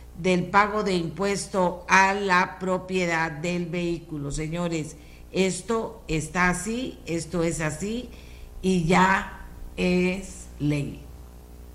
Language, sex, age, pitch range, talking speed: Spanish, female, 50-69, 140-180 Hz, 100 wpm